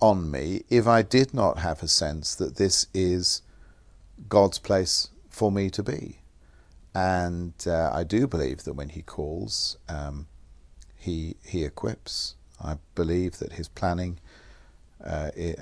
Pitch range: 80-100 Hz